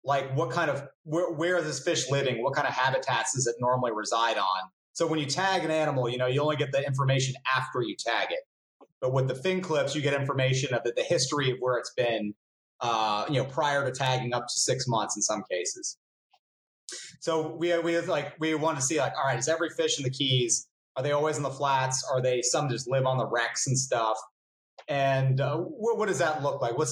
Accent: American